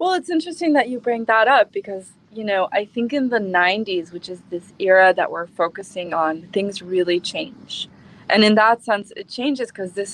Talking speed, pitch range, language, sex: 205 wpm, 180-210 Hz, English, female